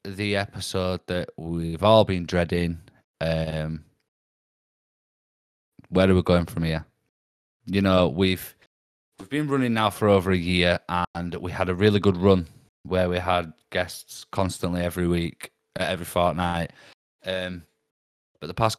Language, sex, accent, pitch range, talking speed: English, male, British, 85-100 Hz, 145 wpm